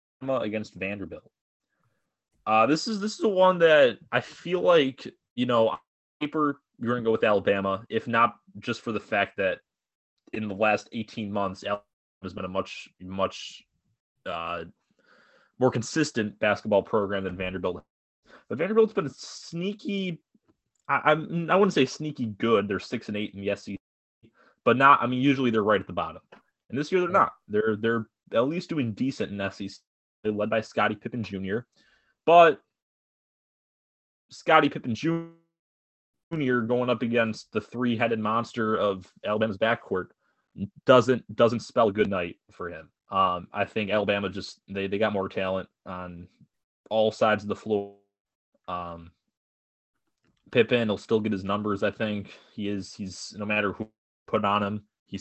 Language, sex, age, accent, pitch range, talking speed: English, male, 20-39, American, 100-125 Hz, 160 wpm